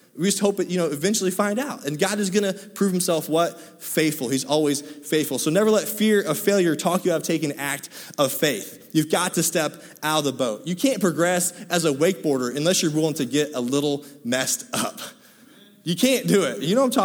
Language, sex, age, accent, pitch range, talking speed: English, male, 20-39, American, 155-200 Hz, 235 wpm